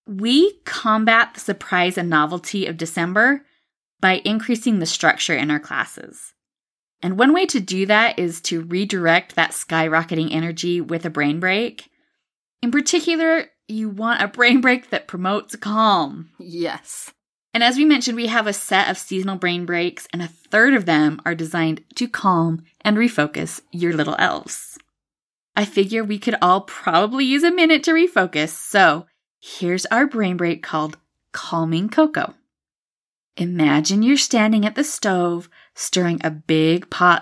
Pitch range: 170-235 Hz